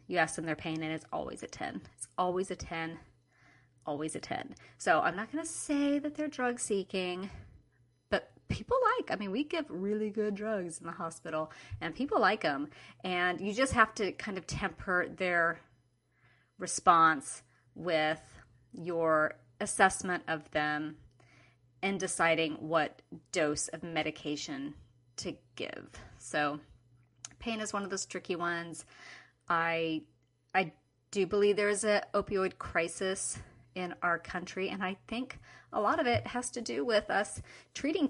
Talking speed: 155 wpm